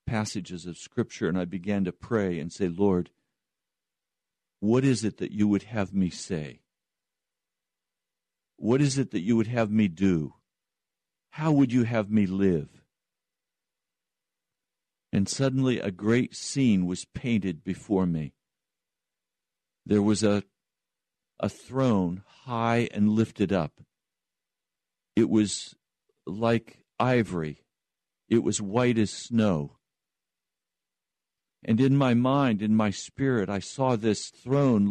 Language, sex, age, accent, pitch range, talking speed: English, male, 50-69, American, 100-125 Hz, 125 wpm